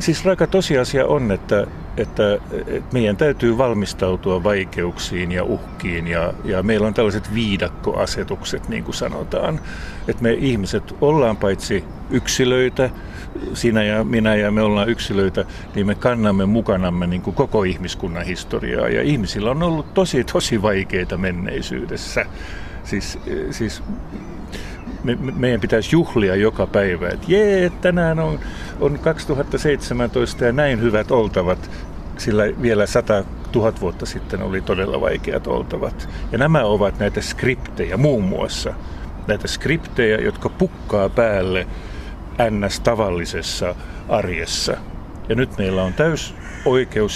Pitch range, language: 95-125 Hz, Finnish